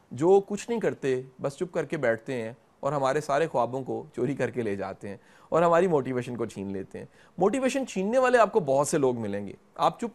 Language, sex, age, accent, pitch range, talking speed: English, male, 30-49, Indian, 120-190 Hz, 215 wpm